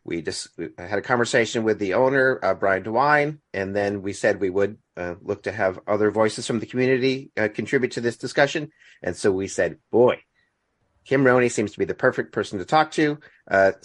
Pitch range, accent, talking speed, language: 110-135 Hz, American, 210 wpm, English